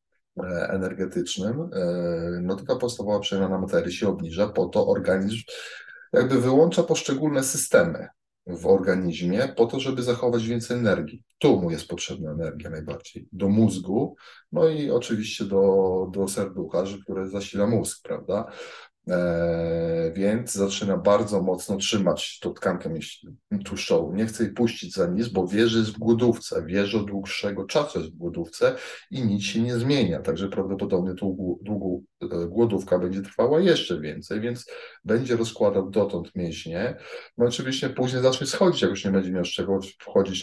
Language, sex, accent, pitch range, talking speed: Polish, male, native, 90-120 Hz, 145 wpm